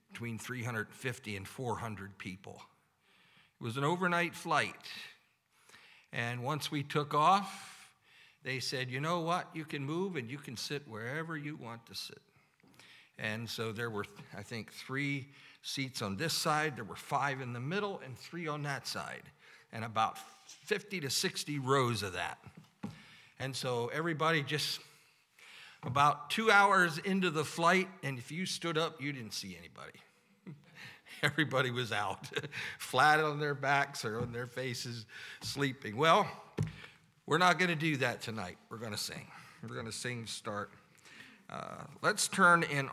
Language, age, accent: English, 50-69, American